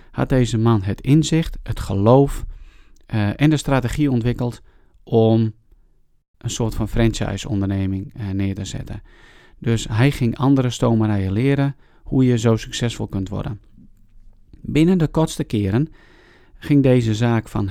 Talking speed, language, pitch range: 140 wpm, Dutch, 100-125 Hz